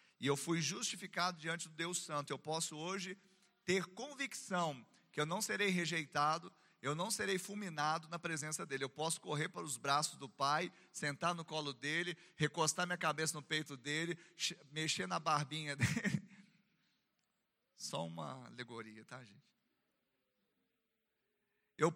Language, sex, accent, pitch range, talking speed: Portuguese, male, Brazilian, 145-190 Hz, 145 wpm